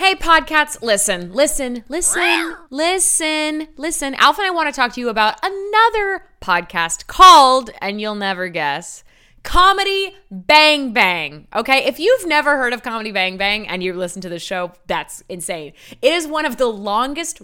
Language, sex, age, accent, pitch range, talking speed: English, female, 20-39, American, 185-295 Hz, 170 wpm